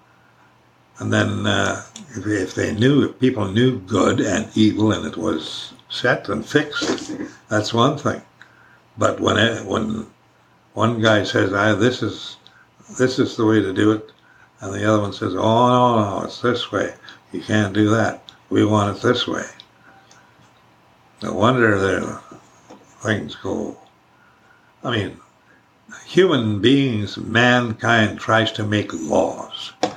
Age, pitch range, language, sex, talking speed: 60-79, 105-120 Hz, English, male, 145 wpm